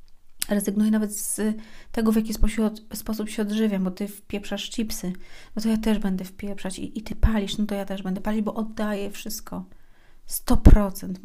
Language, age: Polish, 30-49